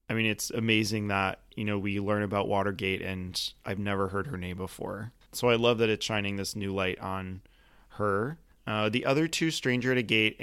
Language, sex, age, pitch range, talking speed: English, male, 20-39, 105-120 Hz, 215 wpm